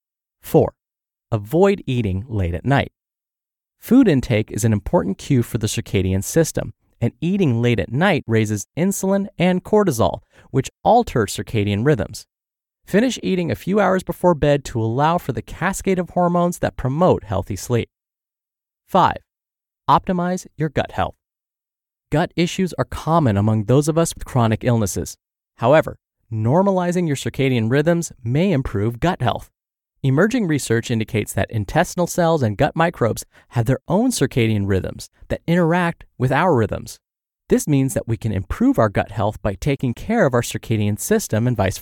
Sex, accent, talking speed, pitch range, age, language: male, American, 155 wpm, 110-170 Hz, 30-49, English